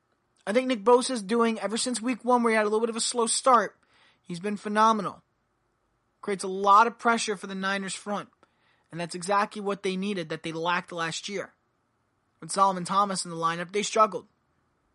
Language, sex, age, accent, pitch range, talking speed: English, male, 20-39, American, 175-235 Hz, 200 wpm